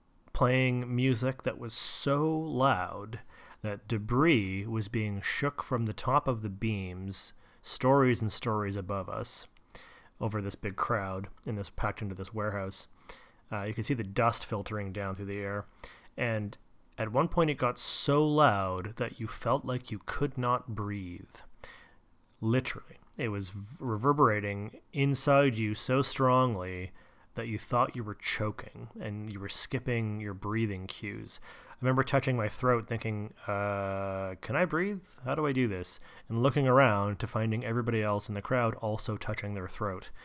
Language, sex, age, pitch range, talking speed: English, male, 30-49, 100-125 Hz, 160 wpm